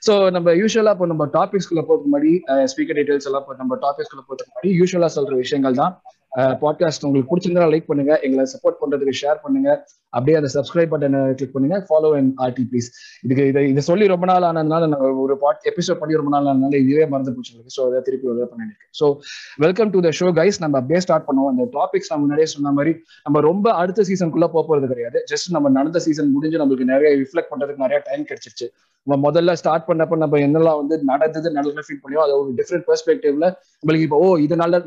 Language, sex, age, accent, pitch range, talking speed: Tamil, male, 20-39, native, 140-185 Hz, 115 wpm